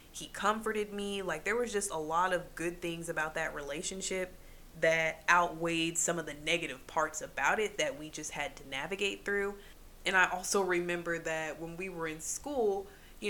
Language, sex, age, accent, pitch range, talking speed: English, female, 20-39, American, 165-205 Hz, 190 wpm